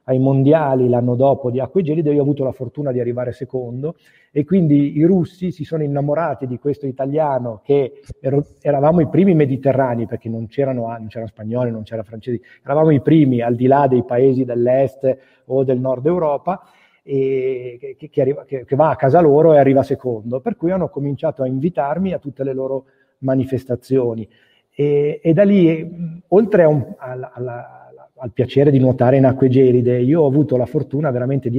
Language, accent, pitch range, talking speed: Italian, native, 125-150 Hz, 190 wpm